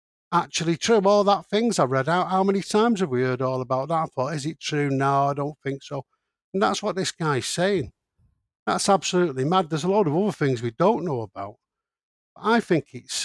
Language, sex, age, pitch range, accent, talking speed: English, male, 60-79, 135-170 Hz, British, 230 wpm